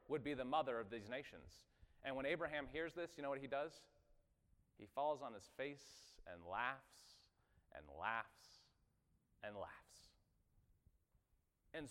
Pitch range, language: 115-160 Hz, English